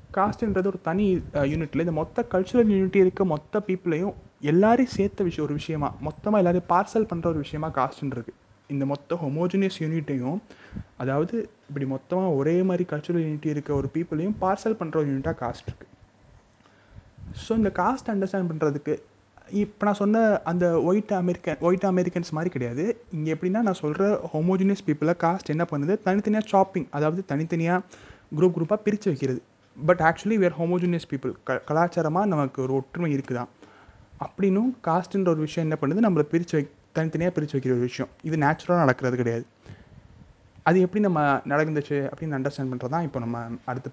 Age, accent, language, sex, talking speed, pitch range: 30-49, native, Tamil, male, 160 wpm, 135-185 Hz